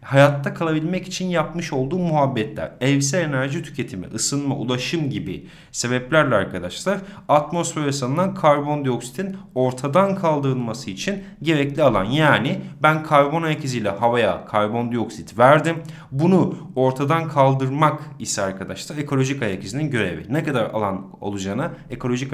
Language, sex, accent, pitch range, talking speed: Turkish, male, native, 125-175 Hz, 120 wpm